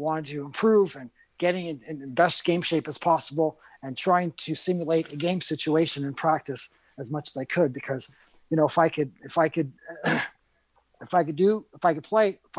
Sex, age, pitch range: male, 30-49, 140-175 Hz